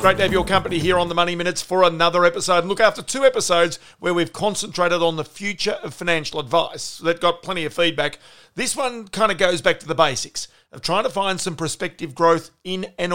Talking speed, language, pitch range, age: 235 wpm, English, 165-200 Hz, 50-69